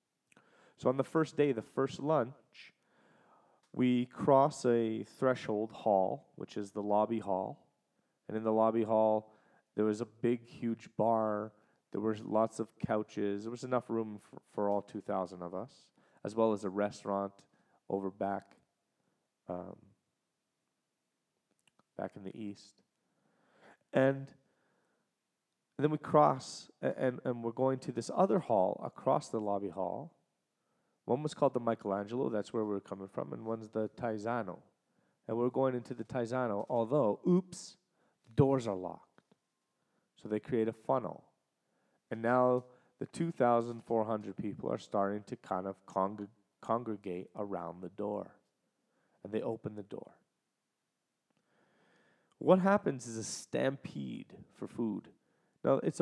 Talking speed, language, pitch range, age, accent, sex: 140 wpm, English, 100-125 Hz, 30-49, American, male